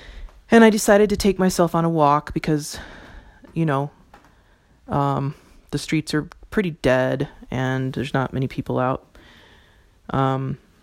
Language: English